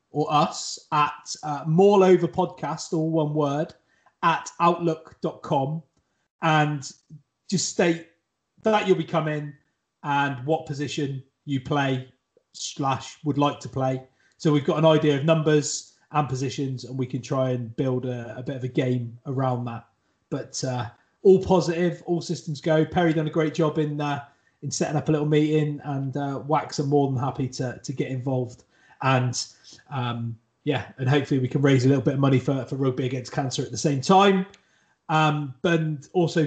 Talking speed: 175 wpm